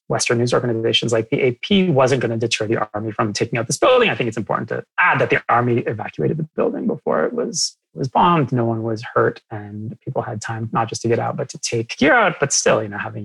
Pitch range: 115-140 Hz